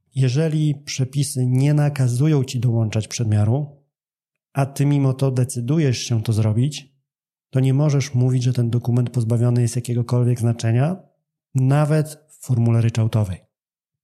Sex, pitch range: male, 120-150 Hz